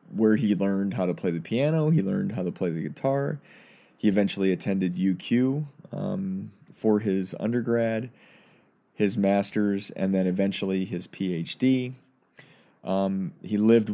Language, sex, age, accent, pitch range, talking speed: English, male, 30-49, American, 95-120 Hz, 140 wpm